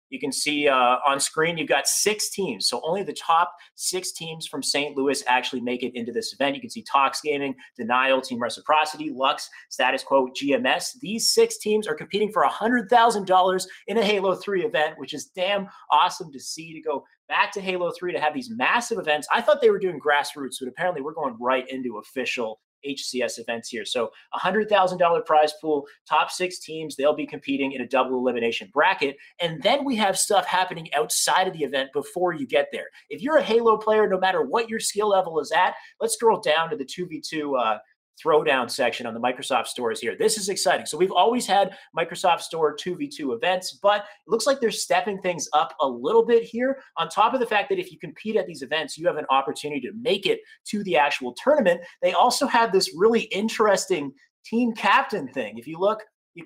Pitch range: 150-220 Hz